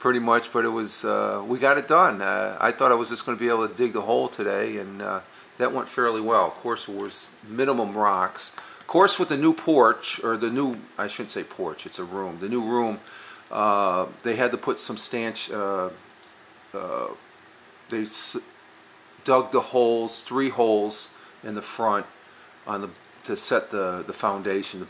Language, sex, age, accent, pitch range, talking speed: English, male, 40-59, American, 100-125 Hz, 200 wpm